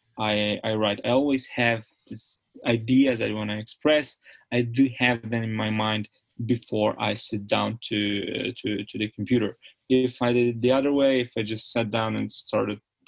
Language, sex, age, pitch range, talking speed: English, male, 20-39, 110-125 Hz, 195 wpm